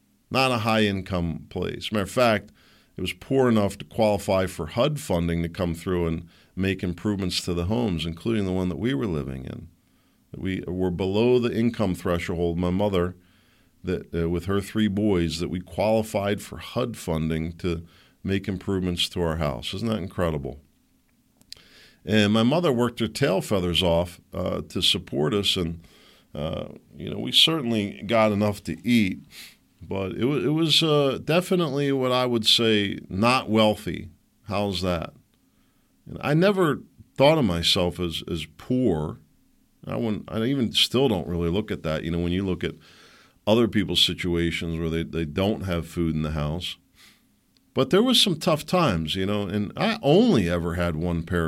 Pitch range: 85-115 Hz